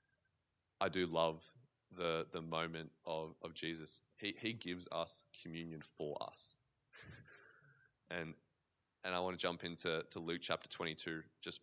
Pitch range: 80-90 Hz